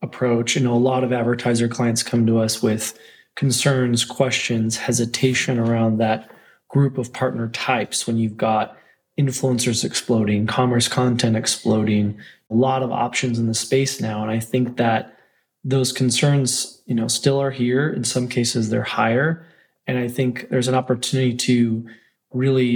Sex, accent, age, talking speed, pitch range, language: male, American, 20-39, 160 wpm, 115-130 Hz, English